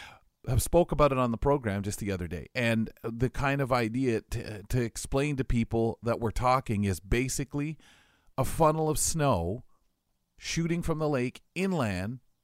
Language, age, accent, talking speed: English, 40-59, American, 170 wpm